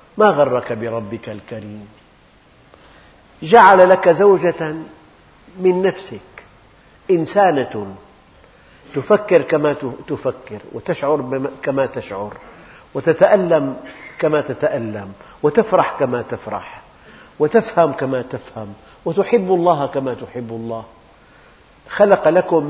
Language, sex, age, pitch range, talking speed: Arabic, male, 50-69, 120-165 Hz, 85 wpm